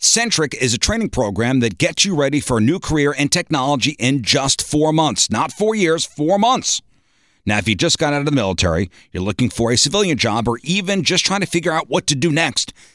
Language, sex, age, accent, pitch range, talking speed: English, male, 50-69, American, 115-160 Hz, 230 wpm